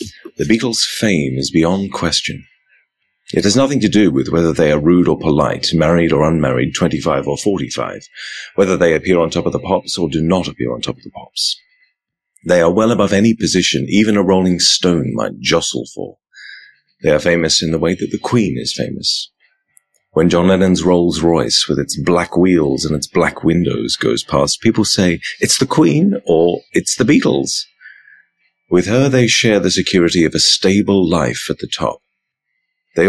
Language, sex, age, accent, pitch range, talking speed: English, male, 30-49, British, 80-95 Hz, 185 wpm